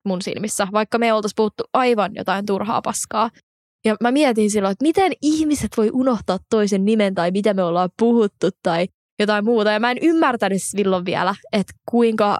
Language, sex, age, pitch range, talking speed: Finnish, female, 20-39, 190-225 Hz, 180 wpm